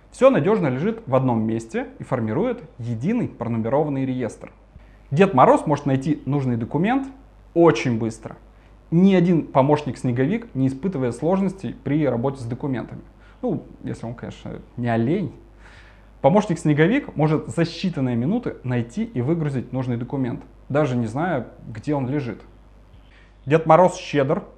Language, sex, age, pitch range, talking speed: Russian, male, 20-39, 120-170 Hz, 130 wpm